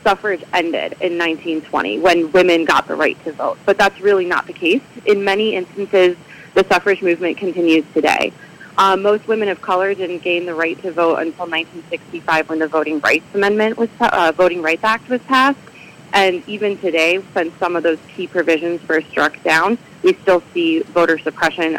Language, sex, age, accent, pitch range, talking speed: English, female, 30-49, American, 165-200 Hz, 185 wpm